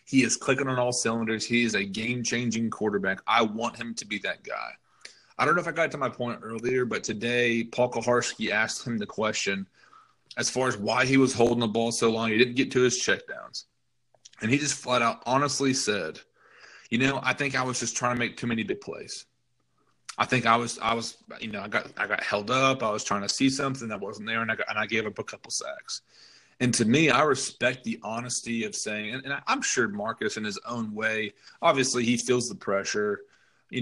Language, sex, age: English, male, 30-49